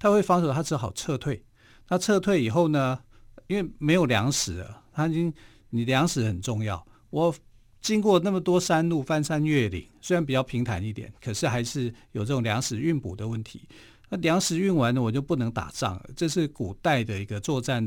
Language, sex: Chinese, male